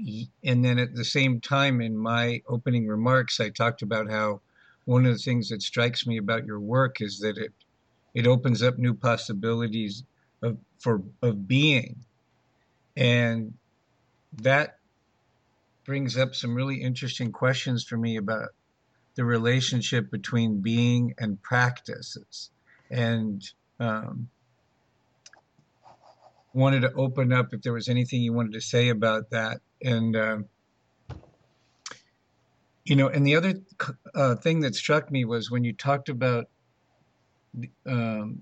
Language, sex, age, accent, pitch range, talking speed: English, male, 50-69, American, 115-130 Hz, 135 wpm